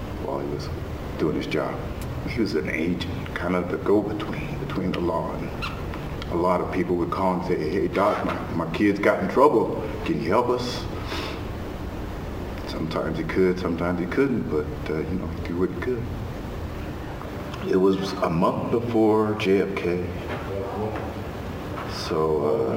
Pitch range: 85-100 Hz